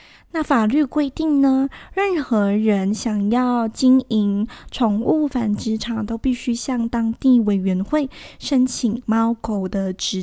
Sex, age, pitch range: female, 10-29, 215-275 Hz